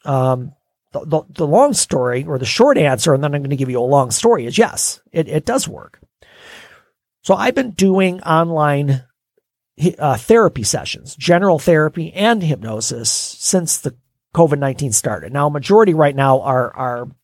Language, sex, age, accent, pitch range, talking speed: English, male, 40-59, American, 130-170 Hz, 170 wpm